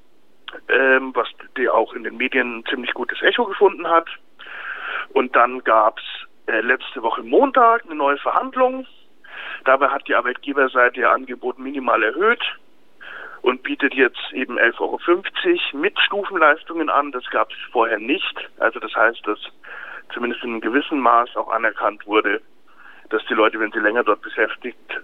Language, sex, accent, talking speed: German, male, German, 160 wpm